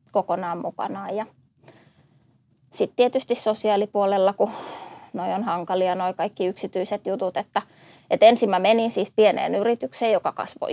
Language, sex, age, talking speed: Finnish, female, 20-39, 125 wpm